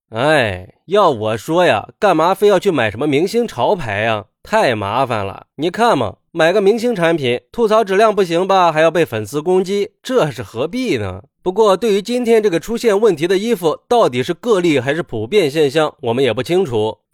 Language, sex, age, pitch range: Chinese, male, 20-39, 135-225 Hz